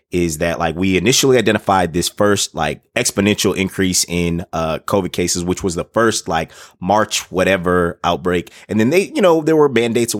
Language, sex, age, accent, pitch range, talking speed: English, male, 30-49, American, 90-115 Hz, 190 wpm